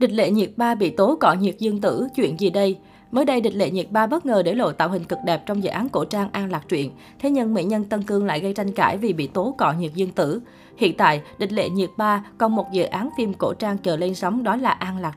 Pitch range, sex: 175-225 Hz, female